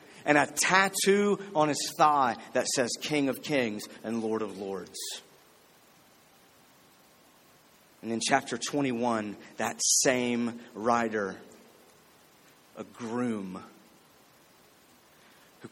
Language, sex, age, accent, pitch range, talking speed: English, male, 30-49, American, 105-130 Hz, 95 wpm